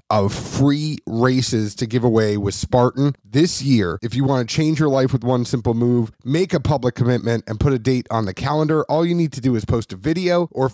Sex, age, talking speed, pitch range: male, 30-49, 235 wpm, 110-145 Hz